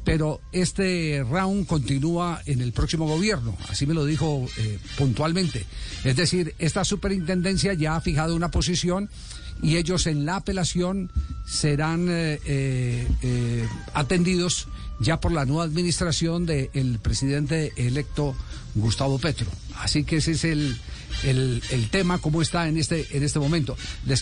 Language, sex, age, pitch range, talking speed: Spanish, male, 50-69, 150-195 Hz, 140 wpm